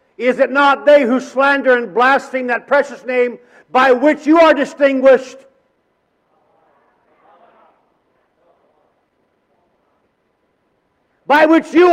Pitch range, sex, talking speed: 255-310 Hz, male, 95 wpm